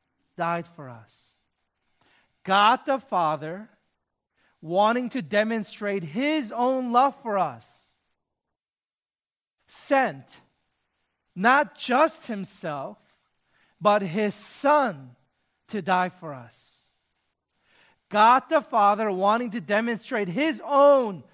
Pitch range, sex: 175-240 Hz, male